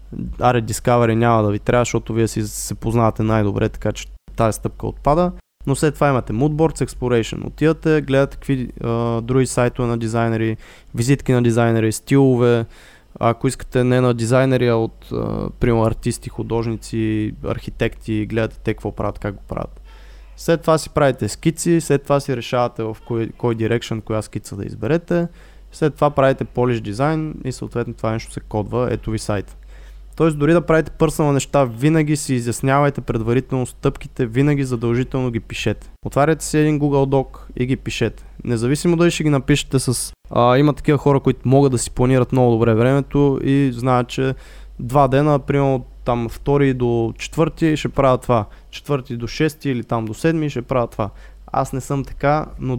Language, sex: Bulgarian, male